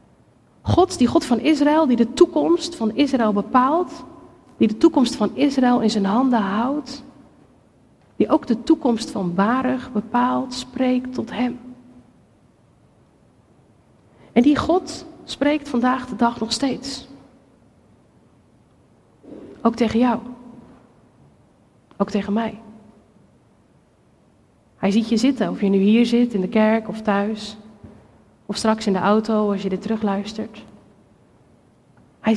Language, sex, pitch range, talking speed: Dutch, female, 220-265 Hz, 130 wpm